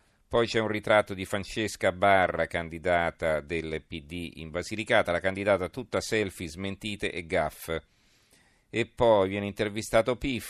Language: Italian